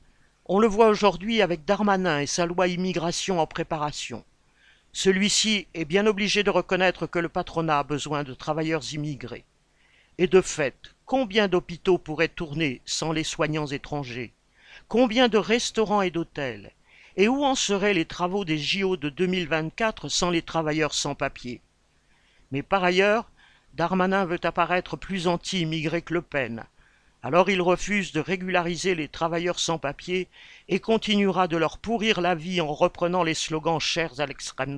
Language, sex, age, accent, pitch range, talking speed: French, male, 50-69, French, 155-195 Hz, 160 wpm